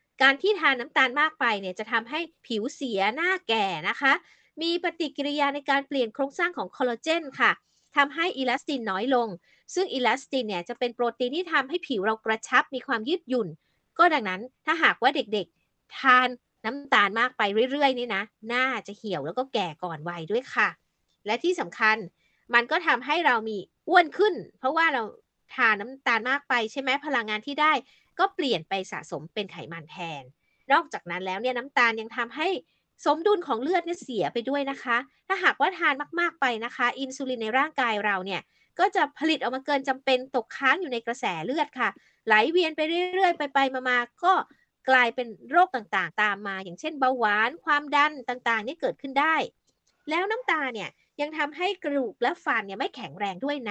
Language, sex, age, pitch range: Thai, female, 30-49, 225-310 Hz